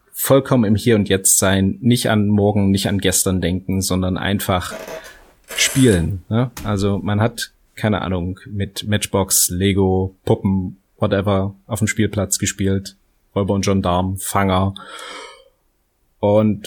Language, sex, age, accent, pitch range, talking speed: German, male, 30-49, German, 95-115 Hz, 115 wpm